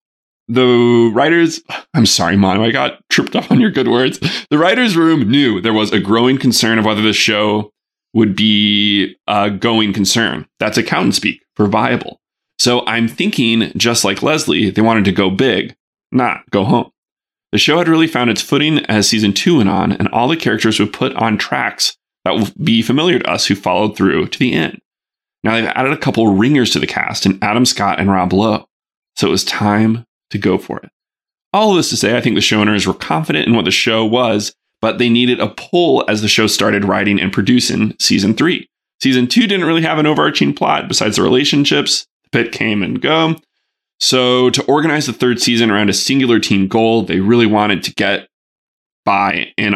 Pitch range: 100-125 Hz